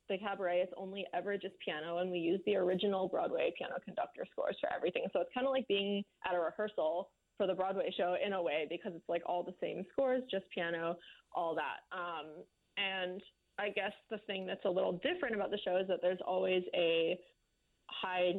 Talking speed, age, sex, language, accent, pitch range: 210 wpm, 20-39, female, English, American, 180-220 Hz